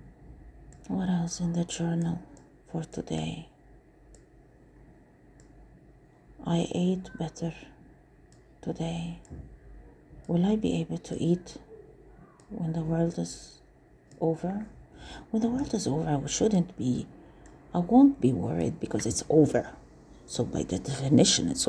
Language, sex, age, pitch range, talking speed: English, female, 50-69, 145-175 Hz, 115 wpm